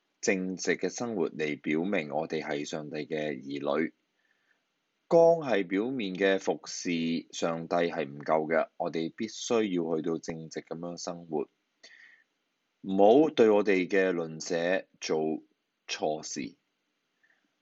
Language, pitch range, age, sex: Chinese, 80-120 Hz, 20-39, male